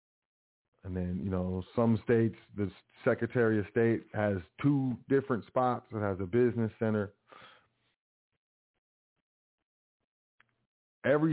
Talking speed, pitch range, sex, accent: 105 wpm, 100-120 Hz, male, American